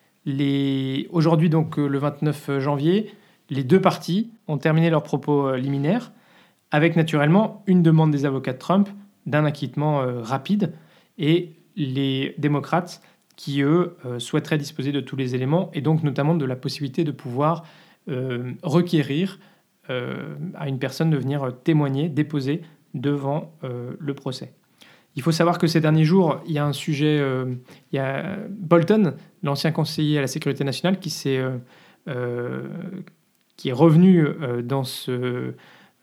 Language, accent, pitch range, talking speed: French, French, 140-175 Hz, 160 wpm